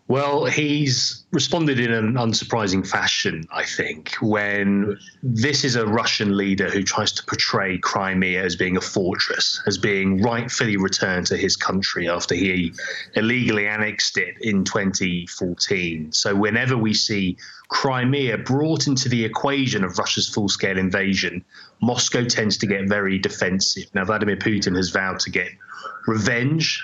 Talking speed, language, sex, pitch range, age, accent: 145 wpm, English, male, 100-125 Hz, 30-49, British